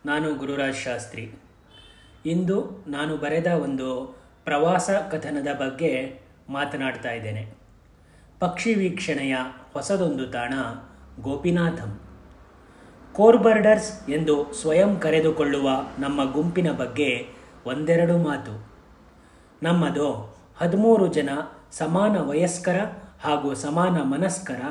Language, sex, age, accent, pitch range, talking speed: Kannada, male, 30-49, native, 135-180 Hz, 85 wpm